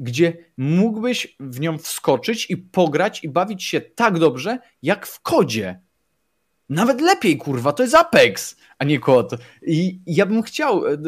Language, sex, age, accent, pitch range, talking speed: Polish, male, 20-39, native, 130-180 Hz, 150 wpm